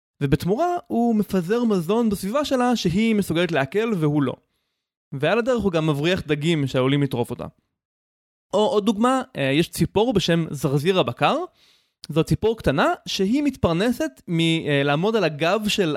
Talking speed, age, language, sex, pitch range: 140 wpm, 20-39, Hebrew, male, 145-210 Hz